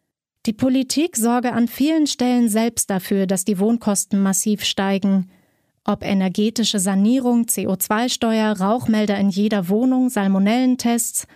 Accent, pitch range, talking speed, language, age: German, 205-245 Hz, 115 wpm, German, 30-49